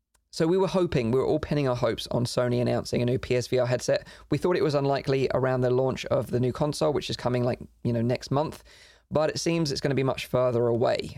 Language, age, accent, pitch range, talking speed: English, 20-39, British, 125-150 Hz, 245 wpm